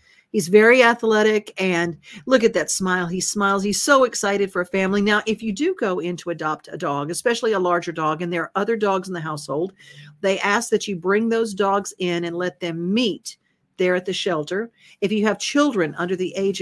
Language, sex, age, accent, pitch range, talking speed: English, female, 50-69, American, 175-215 Hz, 220 wpm